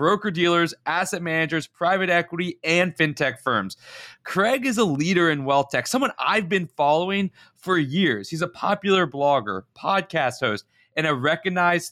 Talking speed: 145 wpm